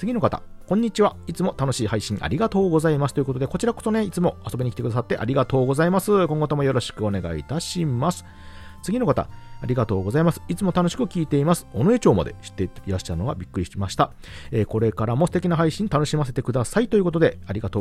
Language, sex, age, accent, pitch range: Japanese, male, 40-59, native, 100-155 Hz